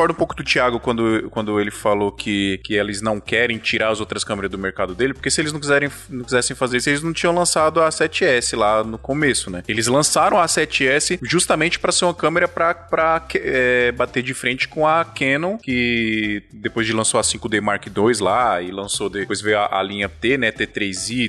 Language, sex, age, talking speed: Portuguese, male, 20-39, 215 wpm